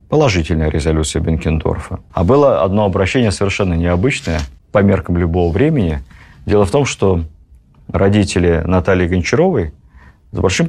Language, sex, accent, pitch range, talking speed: Russian, male, native, 85-115 Hz, 125 wpm